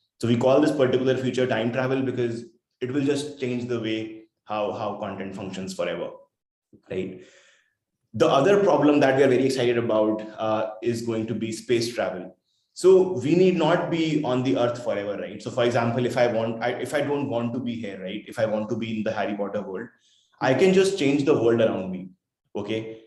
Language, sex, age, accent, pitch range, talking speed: English, male, 20-39, Indian, 110-140 Hz, 210 wpm